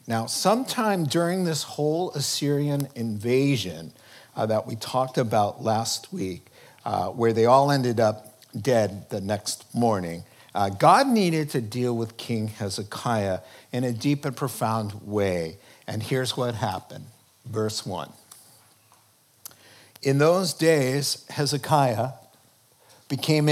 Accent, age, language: American, 50-69, English